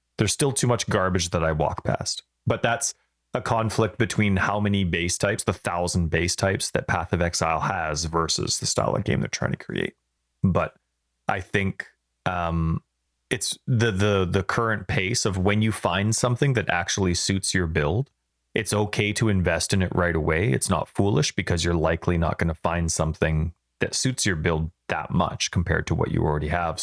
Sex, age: male, 30-49